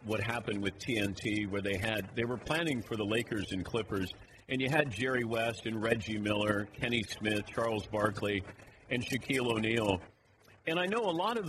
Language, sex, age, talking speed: English, male, 50-69, 190 wpm